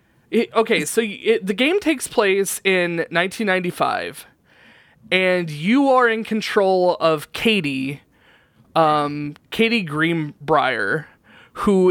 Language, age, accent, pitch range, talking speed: English, 20-39, American, 155-205 Hz, 95 wpm